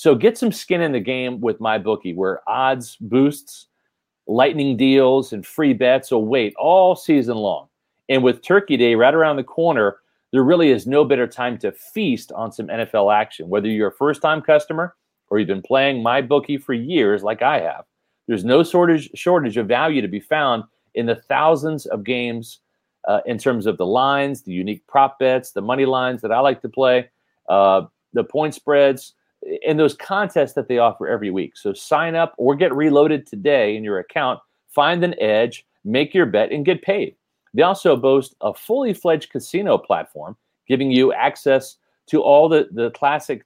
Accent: American